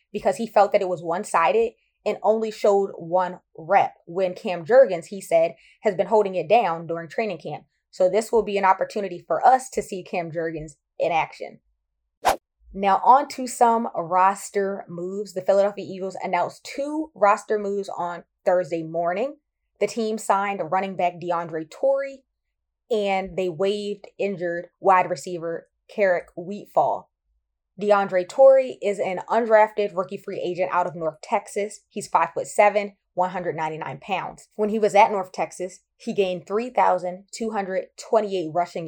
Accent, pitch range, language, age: American, 175-215 Hz, English, 20-39